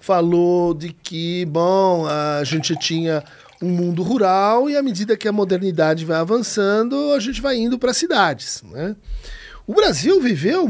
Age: 50-69